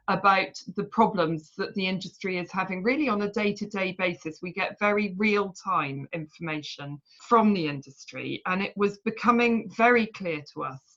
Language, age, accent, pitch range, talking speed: English, 40-59, British, 170-210 Hz, 175 wpm